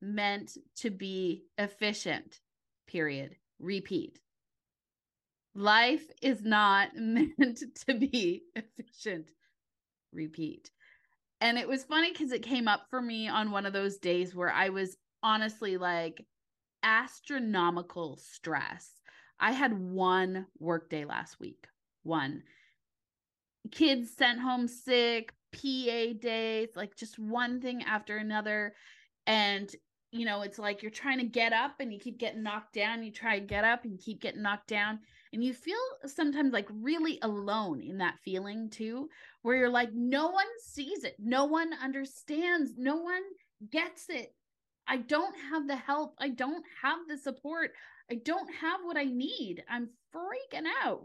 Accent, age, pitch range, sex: American, 20-39, 205-285 Hz, female